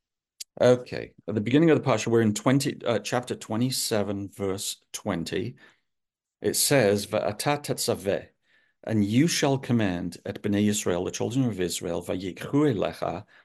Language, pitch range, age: English, 100-130 Hz, 50-69